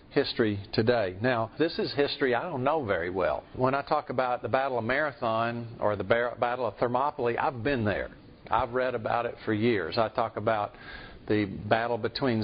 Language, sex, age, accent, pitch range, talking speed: English, male, 50-69, American, 115-145 Hz, 190 wpm